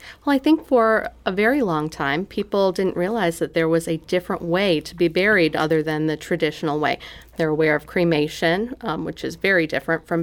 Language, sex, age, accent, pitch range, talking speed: English, female, 40-59, American, 155-195 Hz, 205 wpm